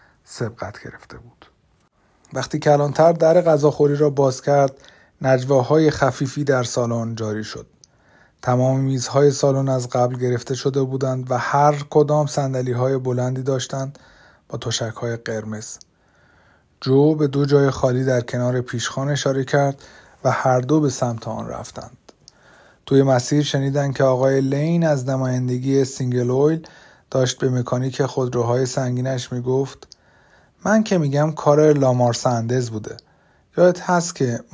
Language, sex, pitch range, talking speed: Persian, male, 125-150 Hz, 135 wpm